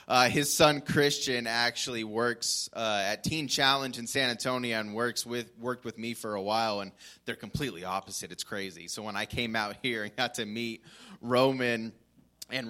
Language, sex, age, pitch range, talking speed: English, male, 20-39, 100-120 Hz, 190 wpm